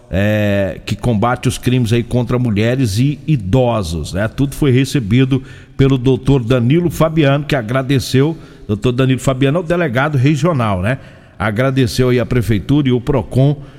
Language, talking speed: Portuguese, 150 wpm